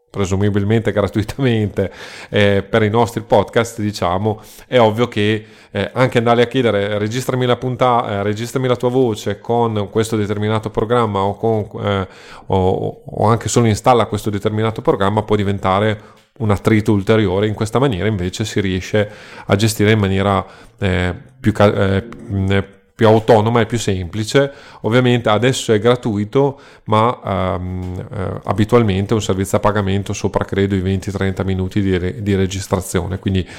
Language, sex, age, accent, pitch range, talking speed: Italian, male, 30-49, native, 95-110 Hz, 150 wpm